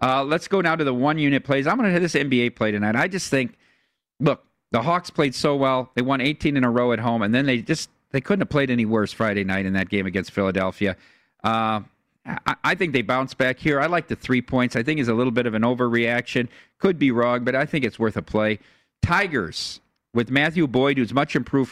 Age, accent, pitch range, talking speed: 40-59, American, 115-145 Hz, 245 wpm